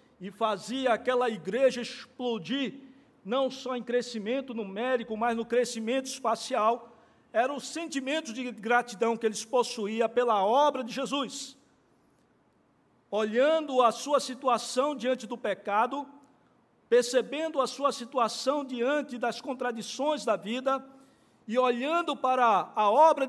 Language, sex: Portuguese, male